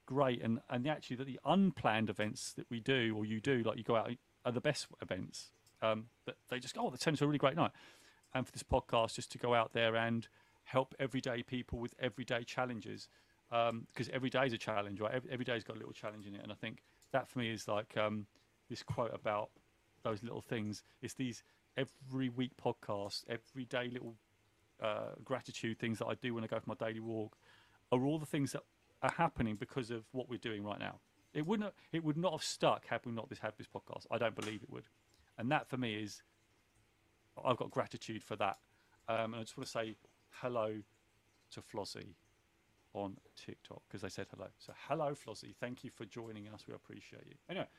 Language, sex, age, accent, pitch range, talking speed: English, male, 40-59, British, 110-130 Hz, 220 wpm